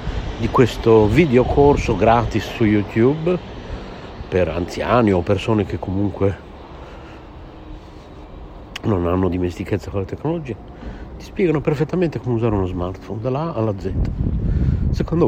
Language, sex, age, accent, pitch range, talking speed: Italian, male, 60-79, native, 90-110 Hz, 120 wpm